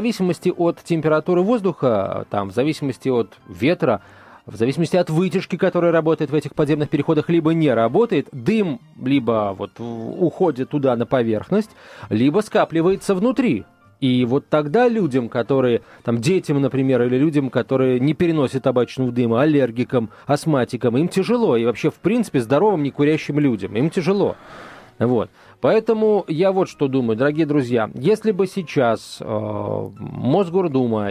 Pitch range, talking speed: 125-180 Hz, 145 wpm